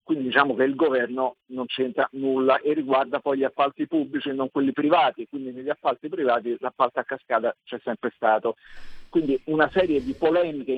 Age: 50-69